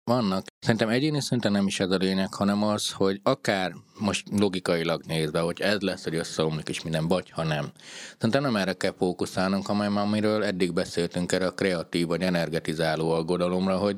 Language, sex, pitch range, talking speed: Hungarian, male, 90-110 Hz, 180 wpm